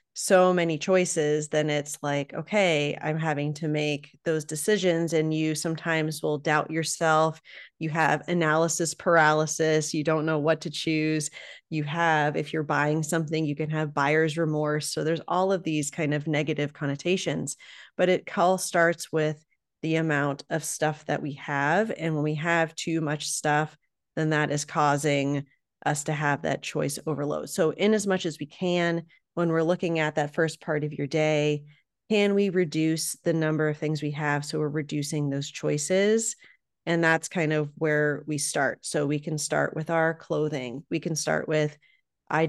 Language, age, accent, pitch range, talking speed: English, 30-49, American, 150-165 Hz, 180 wpm